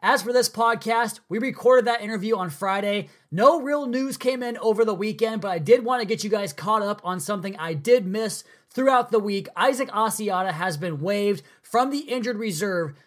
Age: 20-39